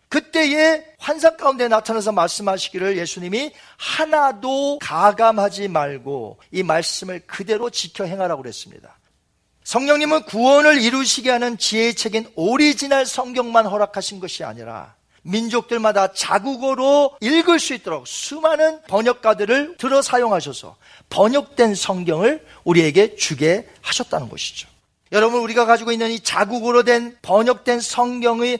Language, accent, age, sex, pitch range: Korean, native, 40-59, male, 205-285 Hz